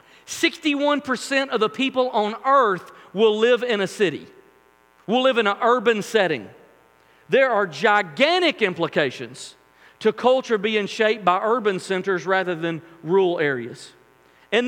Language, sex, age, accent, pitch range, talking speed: English, male, 40-59, American, 190-235 Hz, 130 wpm